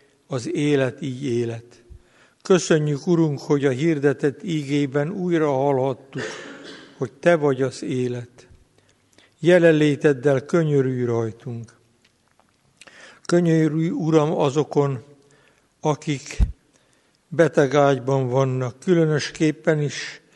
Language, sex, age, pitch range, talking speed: Hungarian, male, 60-79, 130-155 Hz, 85 wpm